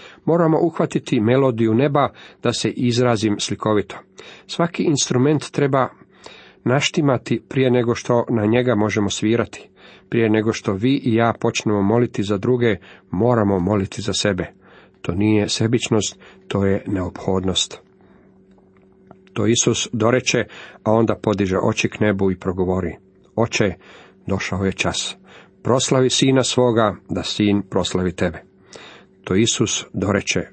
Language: Croatian